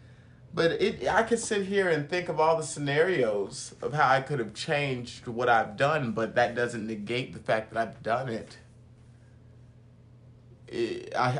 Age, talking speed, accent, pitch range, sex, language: 30-49, 170 wpm, American, 120-150 Hz, male, English